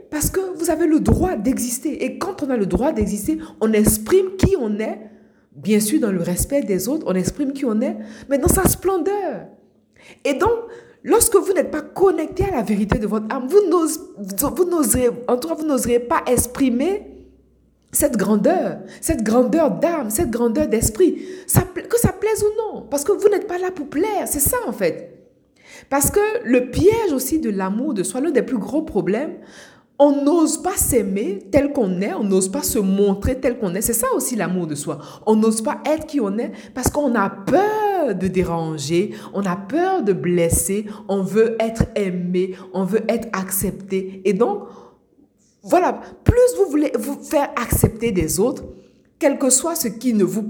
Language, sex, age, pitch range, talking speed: French, female, 50-69, 205-330 Hz, 190 wpm